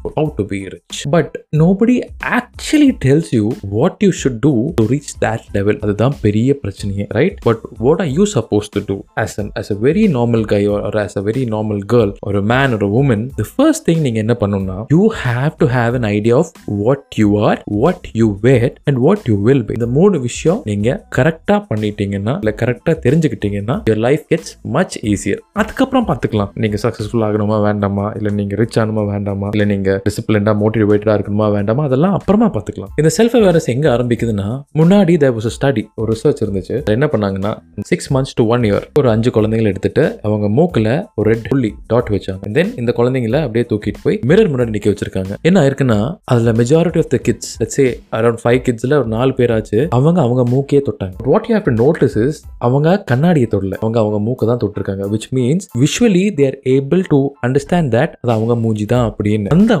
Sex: male